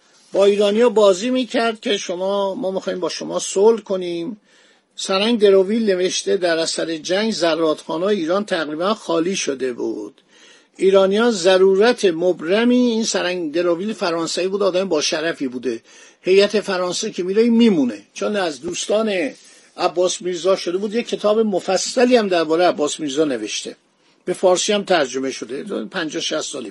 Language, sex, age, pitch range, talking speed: Persian, male, 50-69, 175-215 Hz, 145 wpm